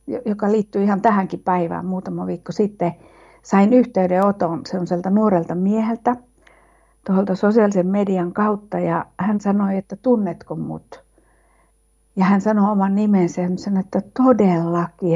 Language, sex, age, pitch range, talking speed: Finnish, female, 60-79, 175-210 Hz, 125 wpm